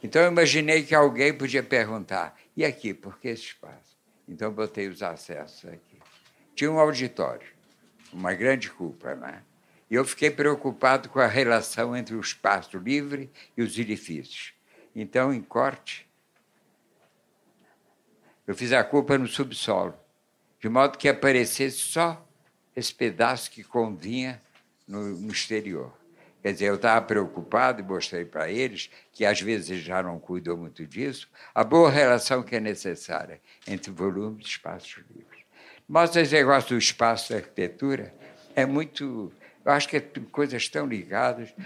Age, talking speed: 60-79, 150 wpm